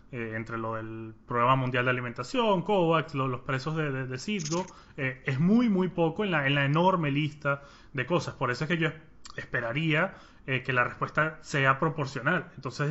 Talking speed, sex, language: 195 wpm, male, Spanish